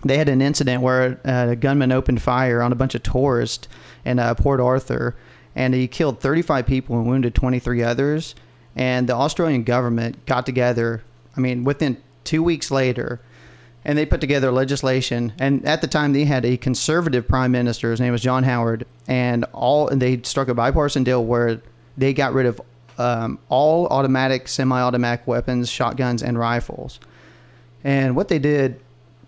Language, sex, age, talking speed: English, male, 30-49, 175 wpm